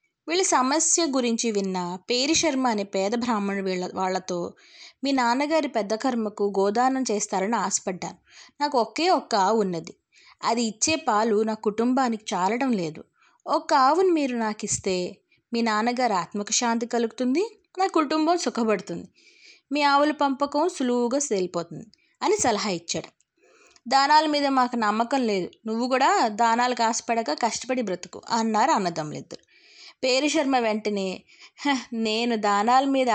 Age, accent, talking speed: 20-39, native, 125 wpm